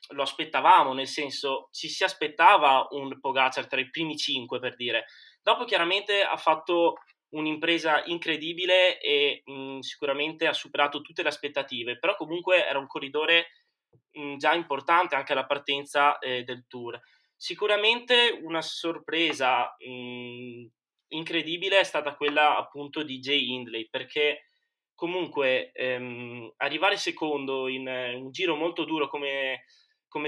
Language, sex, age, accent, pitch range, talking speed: Italian, male, 20-39, native, 135-175 Hz, 135 wpm